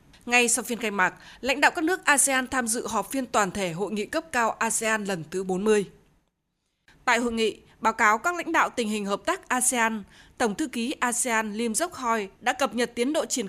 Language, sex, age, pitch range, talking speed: Vietnamese, female, 20-39, 215-275 Hz, 220 wpm